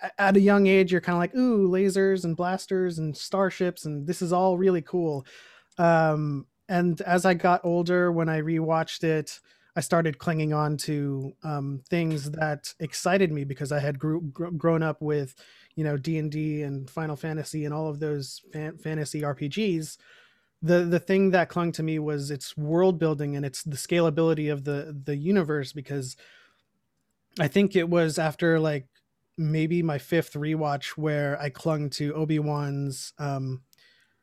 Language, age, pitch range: English, 30-49, 145-170 Hz